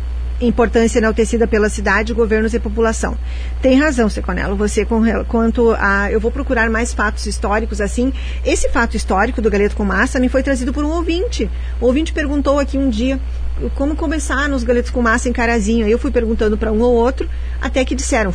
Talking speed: 190 wpm